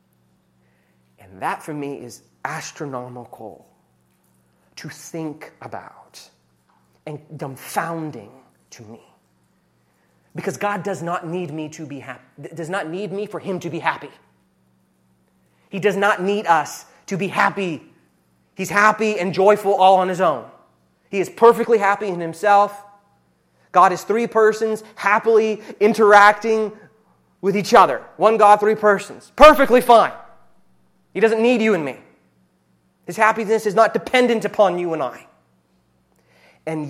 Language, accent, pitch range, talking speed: English, American, 125-210 Hz, 135 wpm